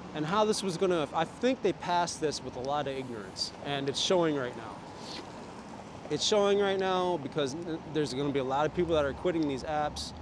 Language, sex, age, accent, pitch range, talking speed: English, male, 30-49, American, 130-165 Hz, 215 wpm